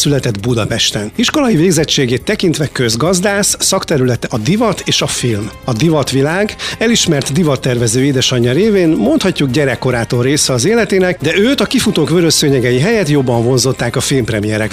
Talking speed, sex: 135 wpm, male